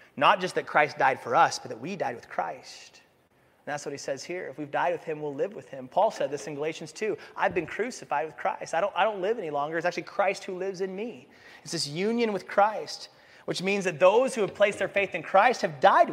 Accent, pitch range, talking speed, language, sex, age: American, 170-230 Hz, 265 wpm, English, male, 30-49